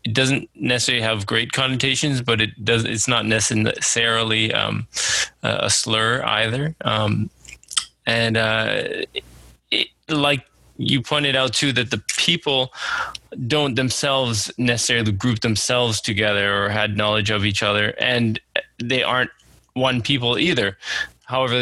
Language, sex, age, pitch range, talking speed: English, male, 20-39, 105-125 Hz, 130 wpm